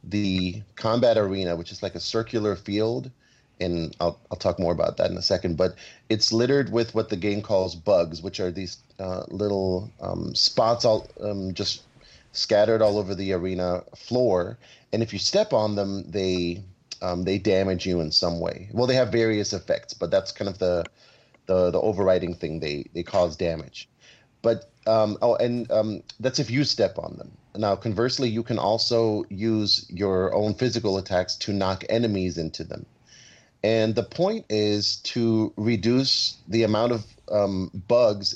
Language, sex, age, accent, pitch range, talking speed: English, male, 30-49, American, 95-115 Hz, 175 wpm